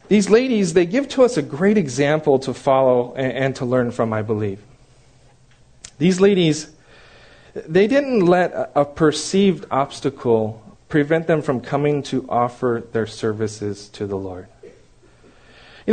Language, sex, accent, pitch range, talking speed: English, male, American, 135-190 Hz, 140 wpm